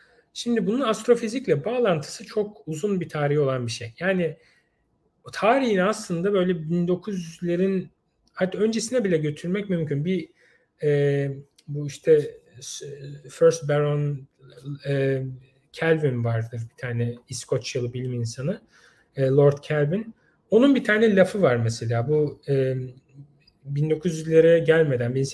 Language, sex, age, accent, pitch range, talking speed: Turkish, male, 40-59, native, 135-185 Hz, 115 wpm